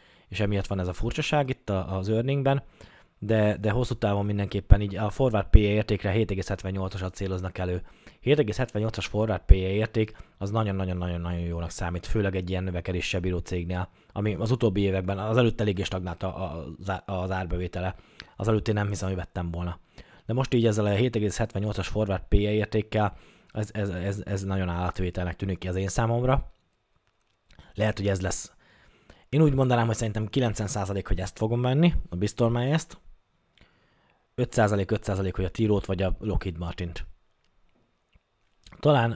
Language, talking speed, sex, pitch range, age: Hungarian, 160 wpm, male, 90-115 Hz, 20-39